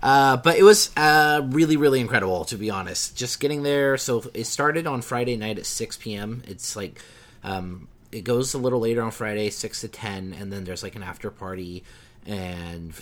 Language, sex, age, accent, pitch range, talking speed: English, male, 30-49, American, 90-120 Hz, 205 wpm